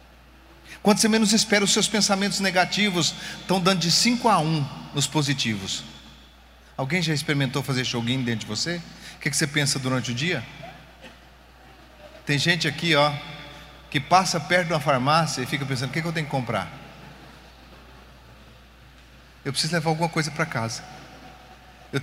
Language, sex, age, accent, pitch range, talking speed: Portuguese, male, 40-59, Brazilian, 145-200 Hz, 170 wpm